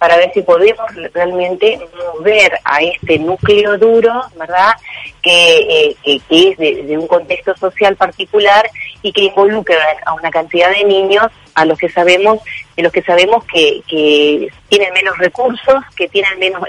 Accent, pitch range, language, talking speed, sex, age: Argentinian, 160-225 Hz, Spanish, 165 wpm, female, 30-49